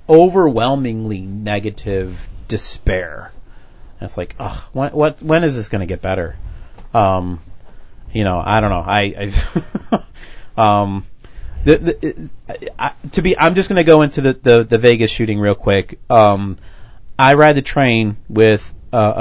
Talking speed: 155 wpm